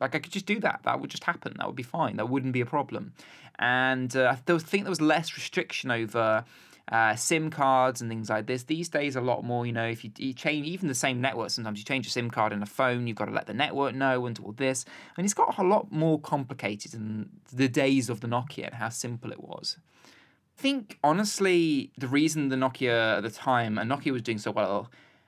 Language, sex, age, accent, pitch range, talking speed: English, male, 20-39, British, 115-155 Hz, 240 wpm